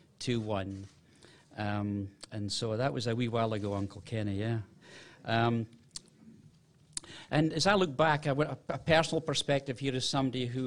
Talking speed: 165 wpm